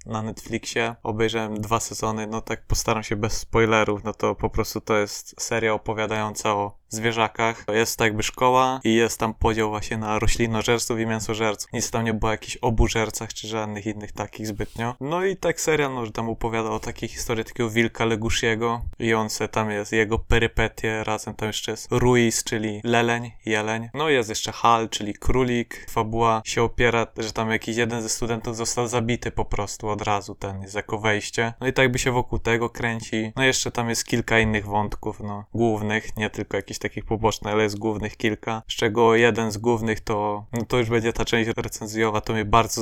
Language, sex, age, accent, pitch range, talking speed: Polish, male, 20-39, native, 110-120 Hz, 200 wpm